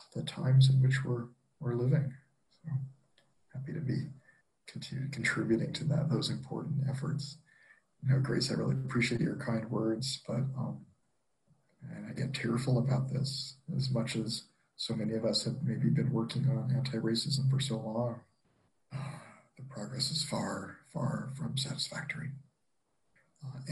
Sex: male